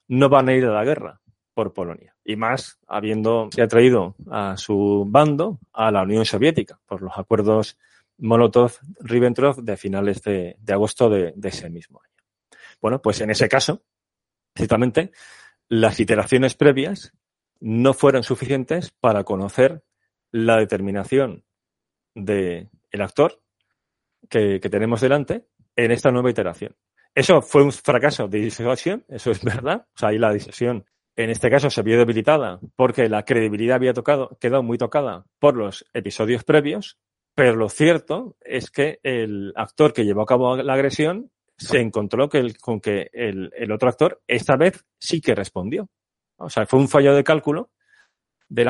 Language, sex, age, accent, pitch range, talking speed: Spanish, male, 30-49, Spanish, 105-140 Hz, 160 wpm